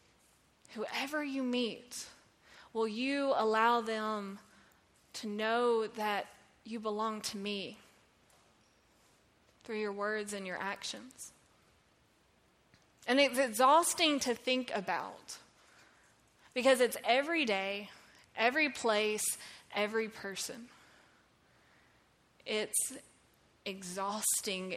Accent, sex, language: American, female, English